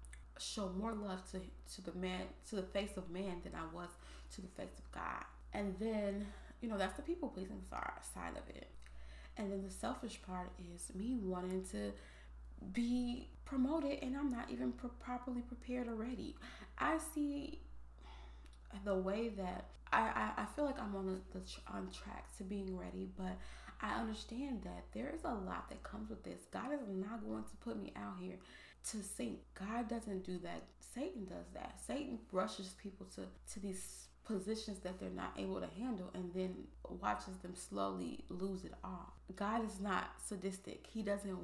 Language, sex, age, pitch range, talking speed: English, female, 20-39, 175-215 Hz, 185 wpm